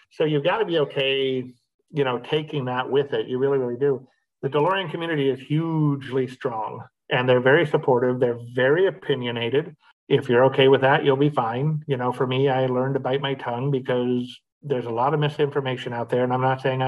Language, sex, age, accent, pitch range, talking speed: English, male, 40-59, American, 125-140 Hz, 210 wpm